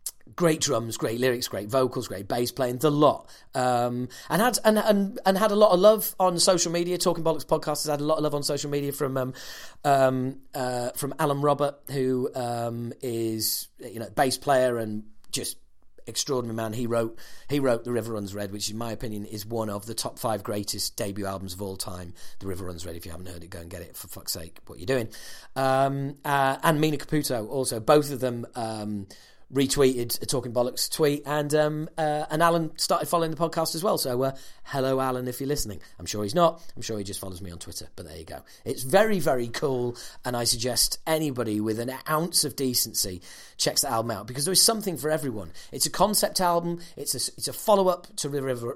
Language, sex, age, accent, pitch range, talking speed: English, male, 40-59, British, 115-165 Hz, 220 wpm